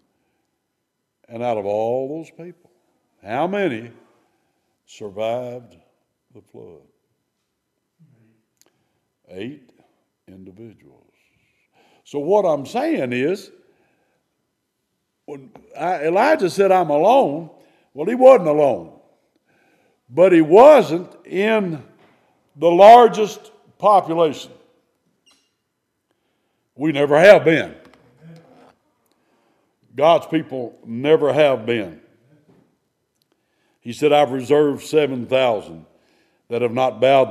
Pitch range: 120-170 Hz